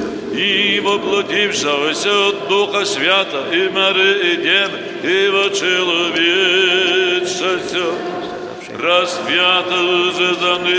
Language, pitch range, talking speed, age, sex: Polish, 175-200 Hz, 65 wpm, 60-79, male